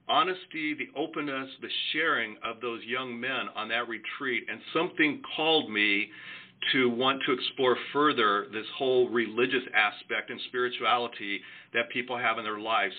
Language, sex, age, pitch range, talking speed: English, male, 50-69, 120-145 Hz, 150 wpm